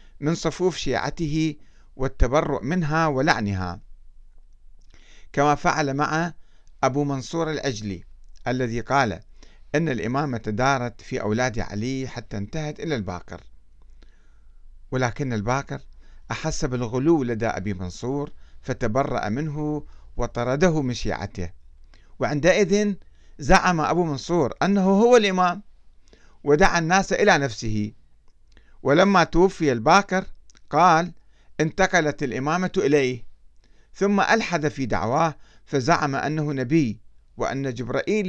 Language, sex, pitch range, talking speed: Arabic, male, 120-170 Hz, 100 wpm